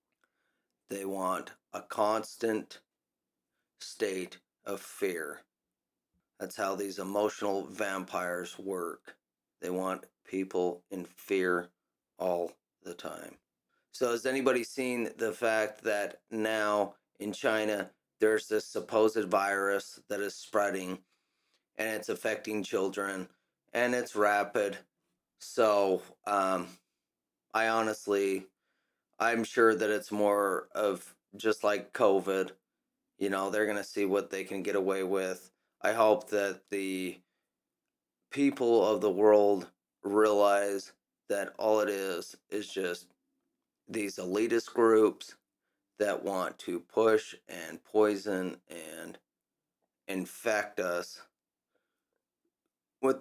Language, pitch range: English, 95-110 Hz